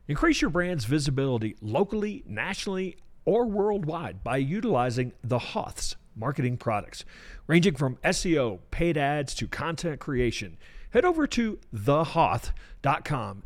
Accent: American